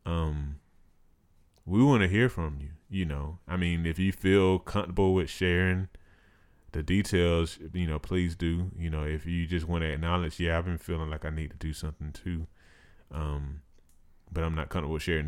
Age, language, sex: 20-39, English, male